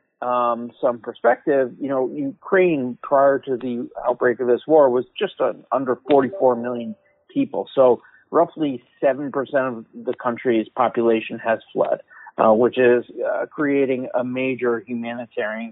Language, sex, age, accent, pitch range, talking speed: English, male, 40-59, American, 120-140 Hz, 140 wpm